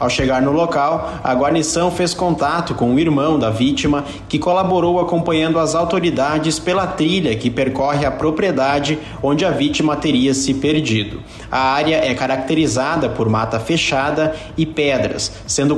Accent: Brazilian